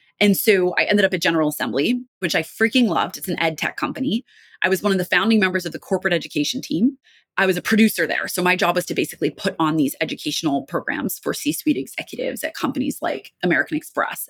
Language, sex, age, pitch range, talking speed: English, female, 20-39, 175-225 Hz, 225 wpm